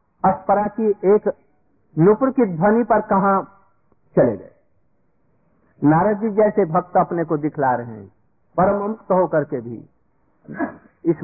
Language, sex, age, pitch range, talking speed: Hindi, male, 50-69, 140-215 Hz, 135 wpm